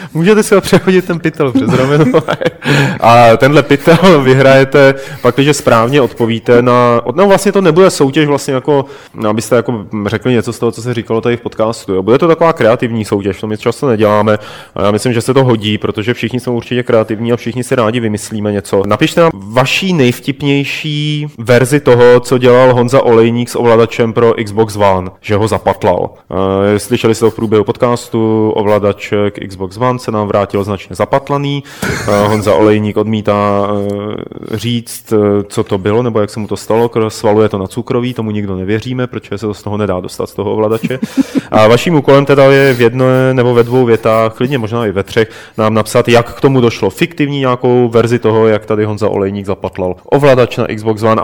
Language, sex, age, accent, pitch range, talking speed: Czech, male, 30-49, native, 105-135 Hz, 185 wpm